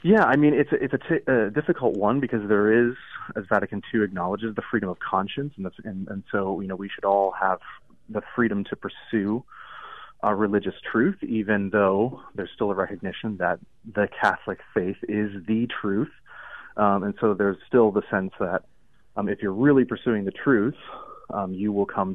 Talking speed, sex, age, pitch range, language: 195 wpm, male, 30-49, 100-120 Hz, English